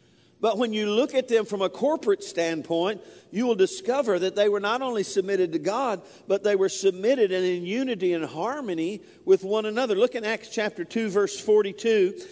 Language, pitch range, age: English, 180-245 Hz, 50-69